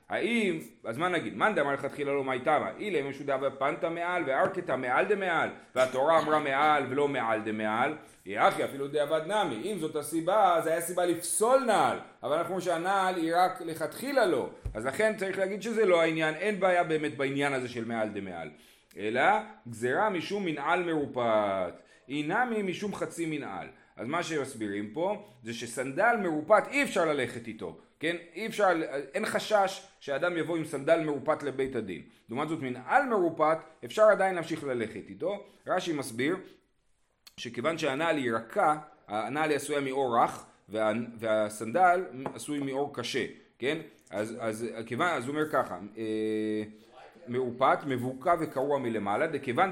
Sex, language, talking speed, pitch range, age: male, Hebrew, 155 wpm, 125-175 Hz, 40-59